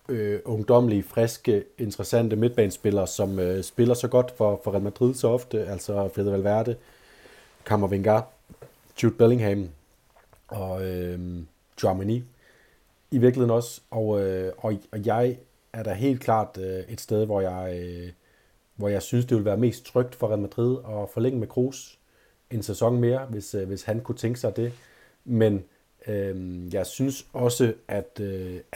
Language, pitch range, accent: Danish, 100-120 Hz, native